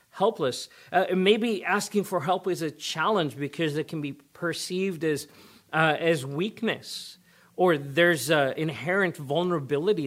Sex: male